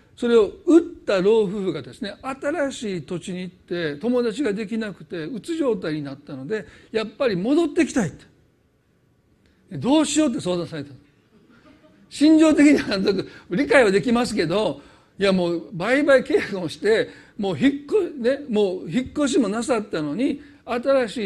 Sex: male